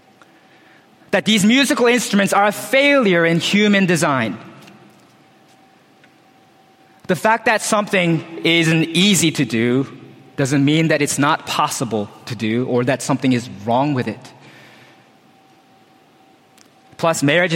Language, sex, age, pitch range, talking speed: English, male, 30-49, 130-170 Hz, 120 wpm